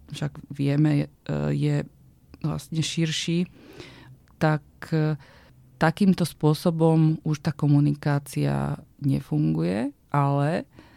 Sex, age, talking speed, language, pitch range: female, 30-49, 75 wpm, Slovak, 145-160 Hz